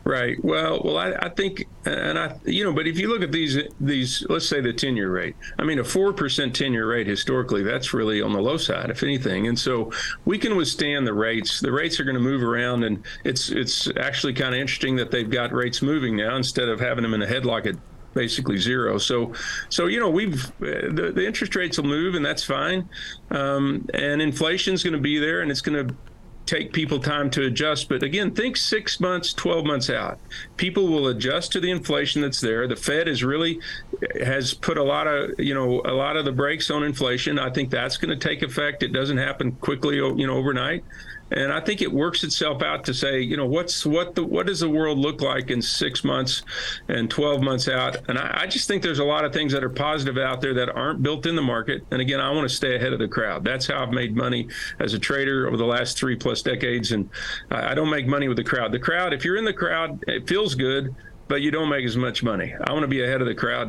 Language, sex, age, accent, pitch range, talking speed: English, male, 50-69, American, 125-150 Hz, 245 wpm